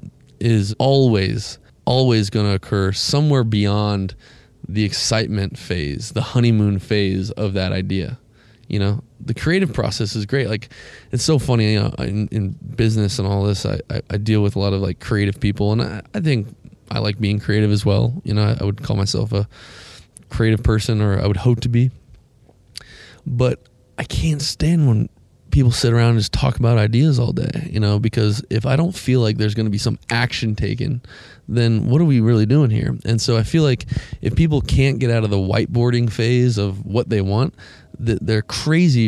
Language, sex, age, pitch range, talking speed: English, male, 20-39, 105-125 Hz, 200 wpm